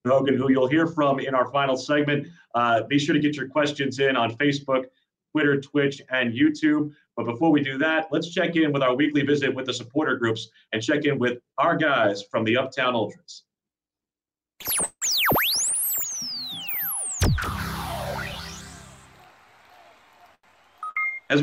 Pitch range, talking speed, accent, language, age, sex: 120-150 Hz, 140 wpm, American, English, 40-59, male